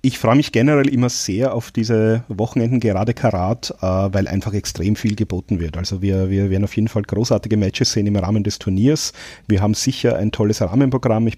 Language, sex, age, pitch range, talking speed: German, male, 40-59, 100-115 Hz, 200 wpm